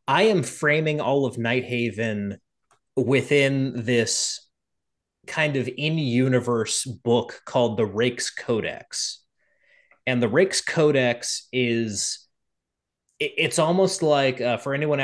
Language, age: English, 30-49